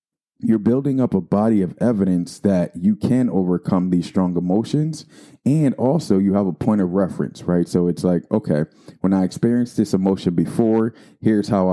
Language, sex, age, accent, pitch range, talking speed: English, male, 20-39, American, 90-100 Hz, 180 wpm